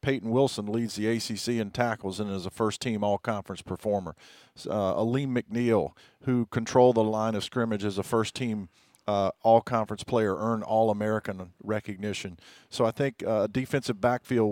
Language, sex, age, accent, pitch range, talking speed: English, male, 50-69, American, 105-125 Hz, 155 wpm